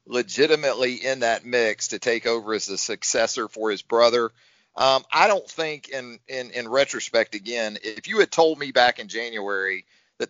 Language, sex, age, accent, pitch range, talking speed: English, male, 40-59, American, 115-150 Hz, 180 wpm